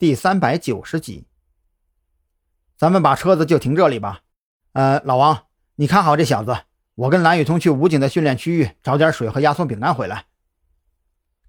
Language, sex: Chinese, male